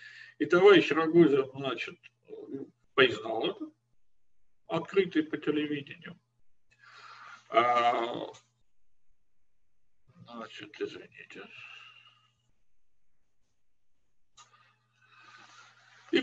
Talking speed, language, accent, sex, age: 45 wpm, Russian, native, male, 50-69